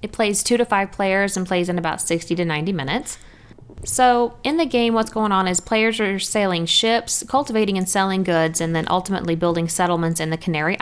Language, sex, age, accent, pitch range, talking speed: English, female, 20-39, American, 165-205 Hz, 210 wpm